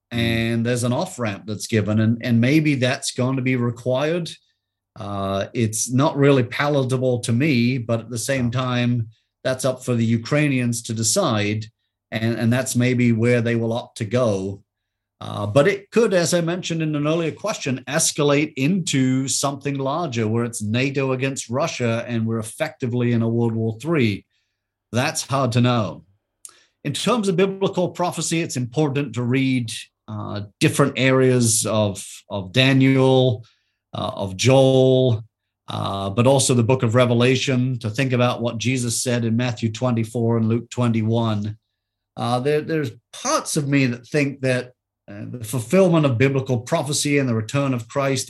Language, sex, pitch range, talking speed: English, male, 115-135 Hz, 165 wpm